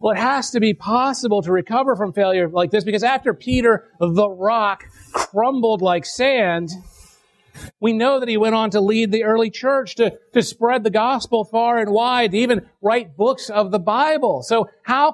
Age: 40-59